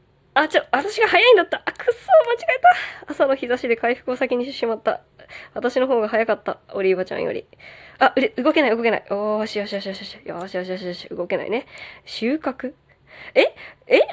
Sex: female